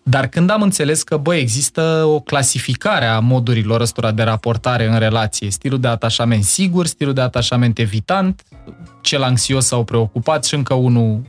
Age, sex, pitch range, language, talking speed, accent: 20-39, male, 115-140 Hz, Romanian, 165 wpm, native